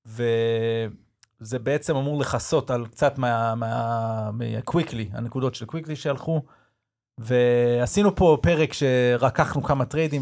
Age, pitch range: 30-49, 115-155 Hz